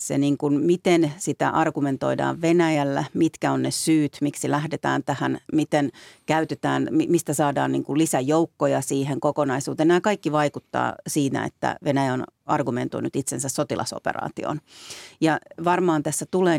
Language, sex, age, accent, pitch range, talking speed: Finnish, female, 40-59, native, 140-160 Hz, 135 wpm